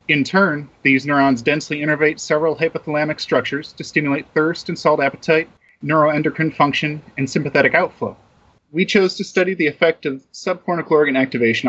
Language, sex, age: English, male, 30-49